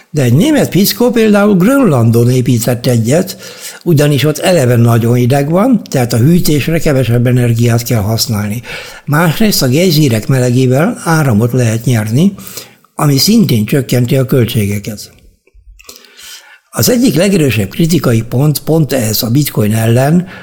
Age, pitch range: 60-79, 120-160 Hz